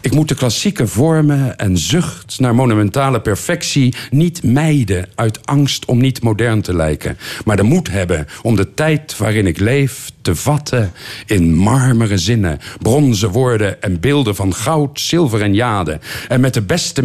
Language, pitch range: Dutch, 100-140 Hz